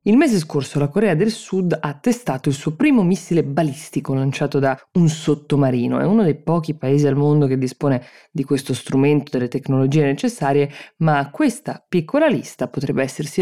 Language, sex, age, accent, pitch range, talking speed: Italian, female, 20-39, native, 130-155 Hz, 180 wpm